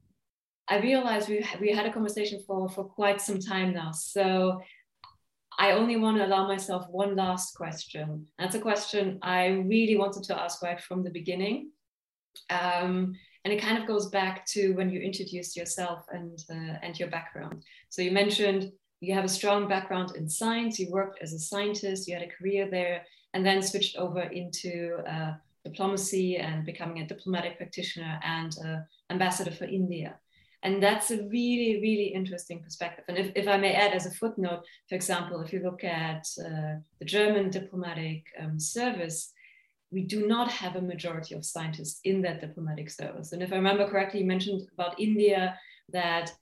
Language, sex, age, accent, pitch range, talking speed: English, female, 20-39, German, 175-200 Hz, 180 wpm